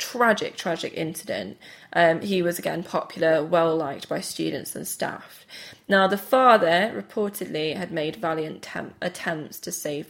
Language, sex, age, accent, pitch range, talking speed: English, female, 20-39, British, 160-190 Hz, 145 wpm